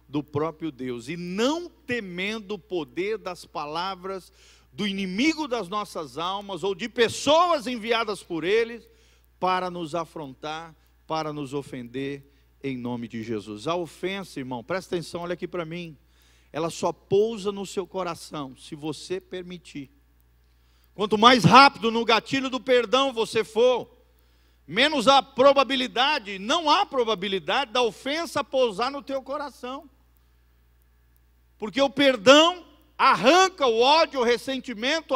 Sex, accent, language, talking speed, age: male, Brazilian, Portuguese, 135 wpm, 50-69